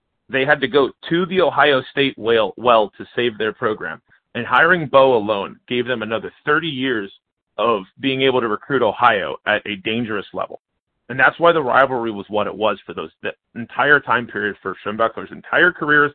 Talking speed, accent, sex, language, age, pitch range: 195 wpm, American, male, English, 30-49, 115-155 Hz